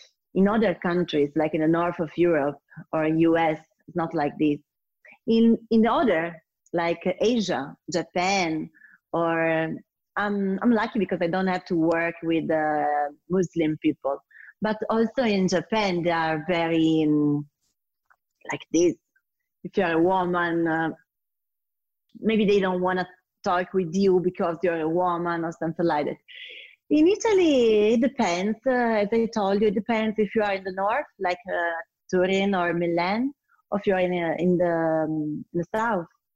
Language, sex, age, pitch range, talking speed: English, female, 30-49, 165-205 Hz, 165 wpm